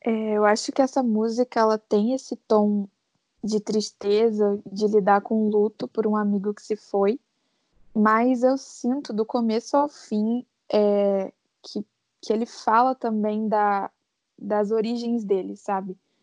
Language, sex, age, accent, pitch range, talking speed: Portuguese, female, 10-29, Brazilian, 205-235 Hz, 145 wpm